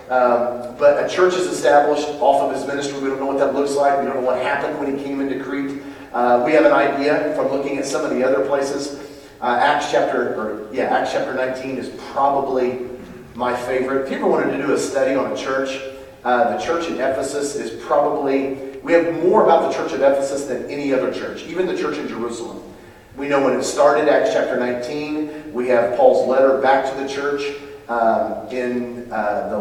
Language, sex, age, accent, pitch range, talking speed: English, male, 40-59, American, 125-140 Hz, 215 wpm